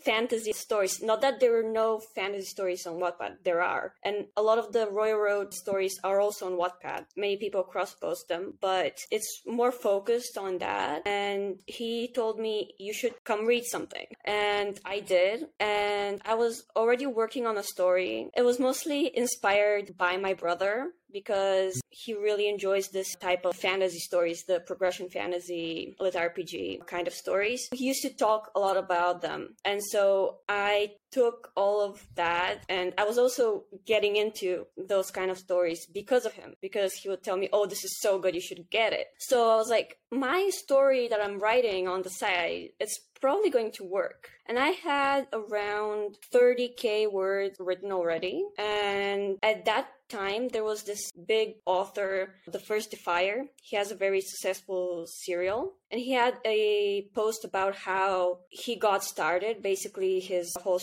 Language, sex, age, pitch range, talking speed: English, female, 20-39, 185-230 Hz, 175 wpm